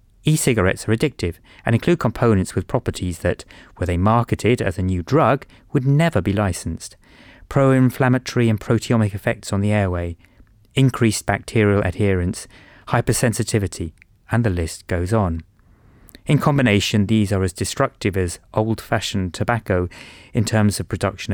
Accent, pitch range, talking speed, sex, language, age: British, 95-115 Hz, 140 wpm, male, English, 30-49